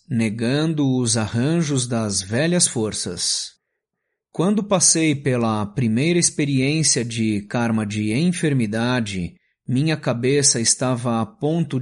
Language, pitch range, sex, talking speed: Portuguese, 115-155 Hz, male, 100 wpm